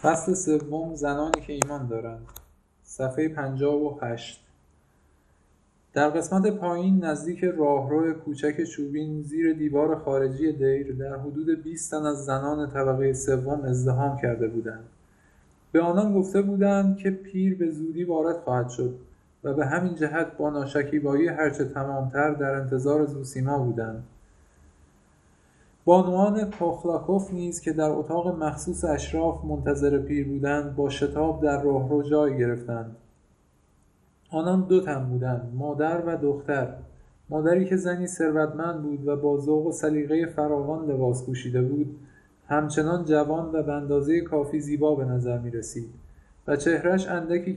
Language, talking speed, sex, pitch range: Persian, 130 wpm, male, 125-160 Hz